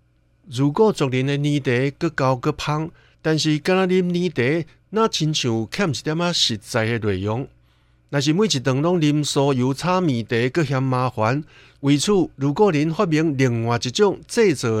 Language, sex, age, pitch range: Chinese, male, 60-79, 125-170 Hz